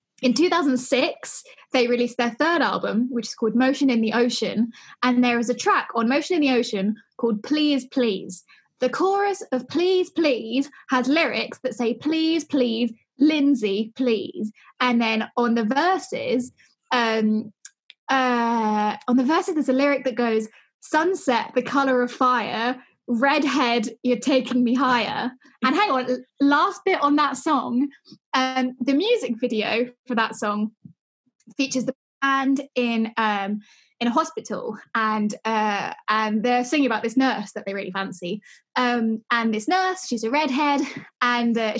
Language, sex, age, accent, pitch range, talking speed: English, female, 10-29, British, 230-280 Hz, 155 wpm